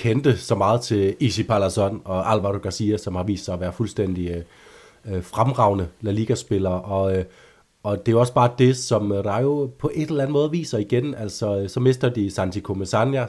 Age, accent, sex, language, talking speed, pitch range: 30-49, native, male, Danish, 195 wpm, 95-120 Hz